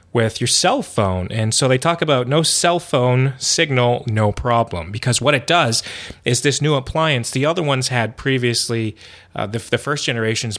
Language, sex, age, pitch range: English, male, 30-49, 110-130 Hz